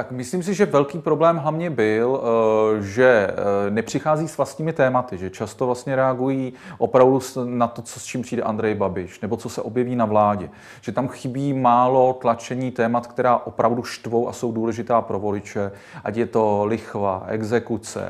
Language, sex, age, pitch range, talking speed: Czech, male, 30-49, 110-140 Hz, 170 wpm